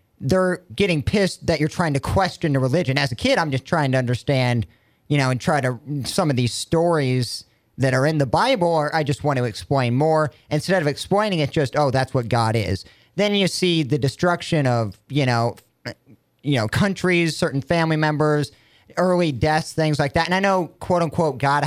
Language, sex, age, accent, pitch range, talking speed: English, male, 40-59, American, 130-175 Hz, 205 wpm